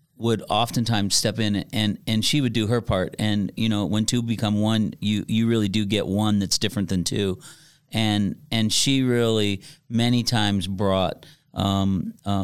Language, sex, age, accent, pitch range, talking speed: English, male, 40-59, American, 105-135 Hz, 180 wpm